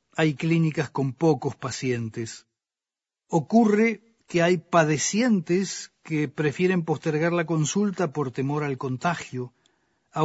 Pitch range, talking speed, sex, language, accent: 135-170 Hz, 110 wpm, male, Spanish, Argentinian